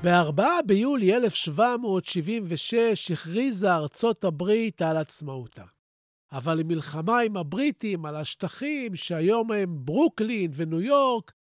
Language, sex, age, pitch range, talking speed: Hebrew, male, 50-69, 160-230 Hz, 105 wpm